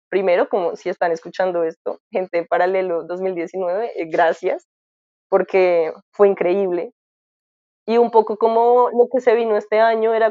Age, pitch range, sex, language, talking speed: 20-39, 185-230 Hz, female, Spanish, 140 wpm